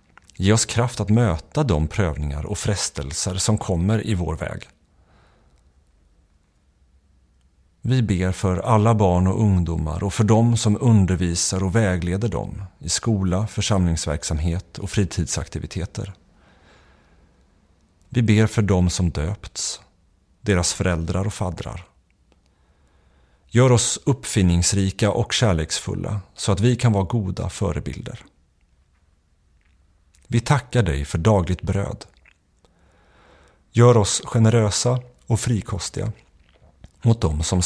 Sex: male